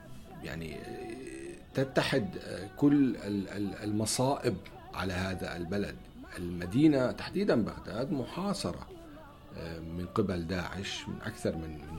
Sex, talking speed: male, 85 wpm